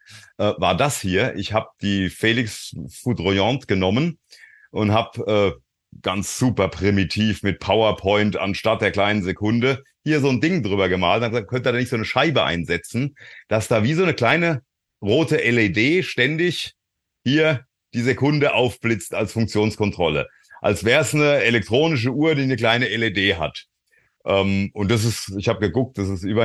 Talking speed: 165 wpm